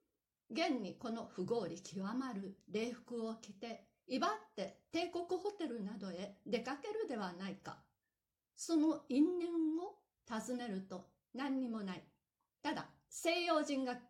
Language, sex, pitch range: Japanese, female, 195-295 Hz